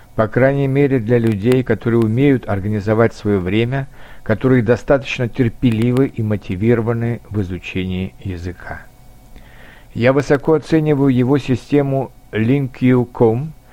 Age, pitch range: 50-69, 115-135 Hz